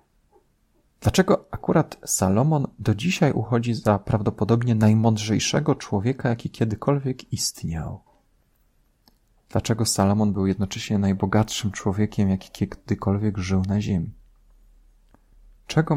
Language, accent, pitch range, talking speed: Polish, native, 95-115 Hz, 95 wpm